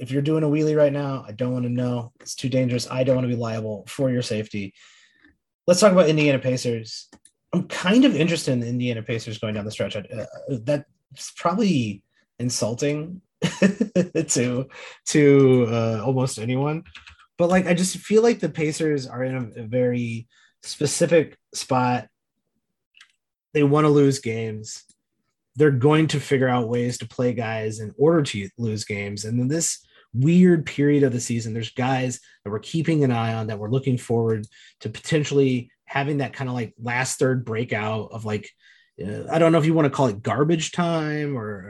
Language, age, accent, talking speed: English, 30-49, American, 185 wpm